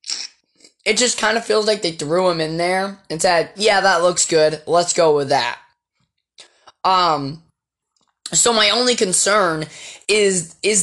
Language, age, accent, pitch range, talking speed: English, 10-29, American, 155-190 Hz, 155 wpm